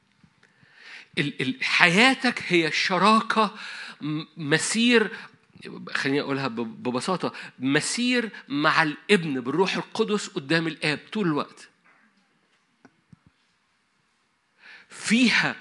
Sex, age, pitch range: male, 50-69, 165-220 Hz